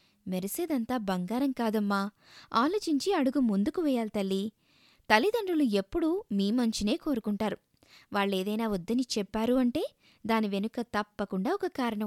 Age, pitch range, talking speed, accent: 20-39, 200-260 Hz, 105 wpm, native